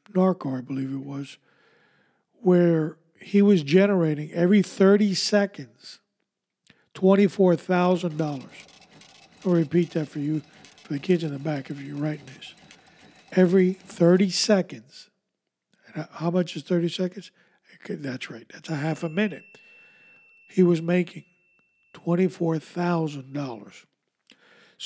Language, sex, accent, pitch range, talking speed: English, male, American, 155-185 Hz, 115 wpm